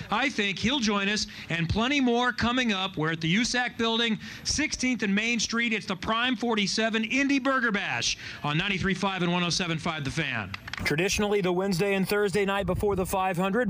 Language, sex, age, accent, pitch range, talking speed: English, male, 40-59, American, 160-220 Hz, 180 wpm